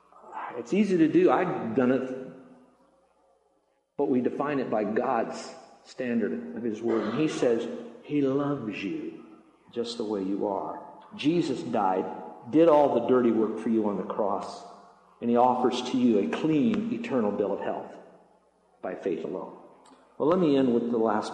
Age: 50-69